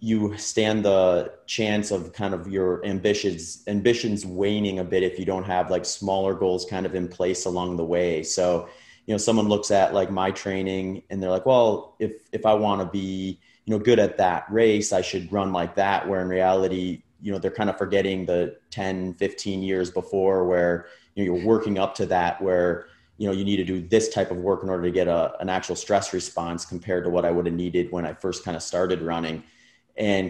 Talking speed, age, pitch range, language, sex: 225 wpm, 30-49, 90-105 Hz, English, male